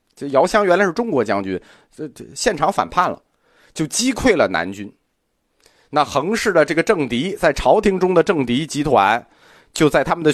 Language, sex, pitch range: Chinese, male, 125-210 Hz